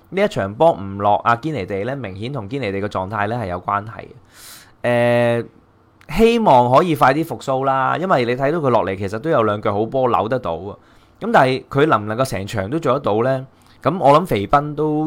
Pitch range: 100-140 Hz